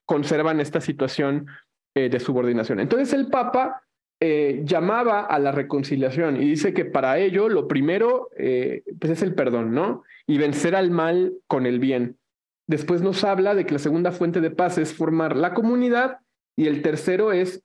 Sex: male